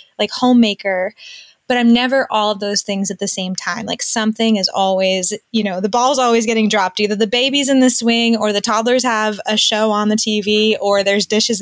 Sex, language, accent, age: female, English, American, 20-39